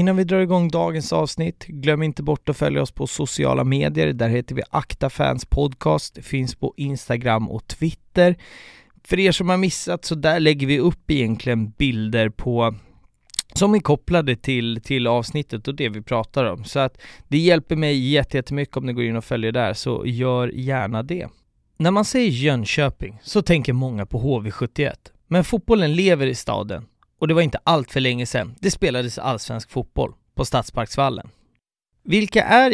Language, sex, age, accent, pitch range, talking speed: Swedish, male, 30-49, native, 120-160 Hz, 170 wpm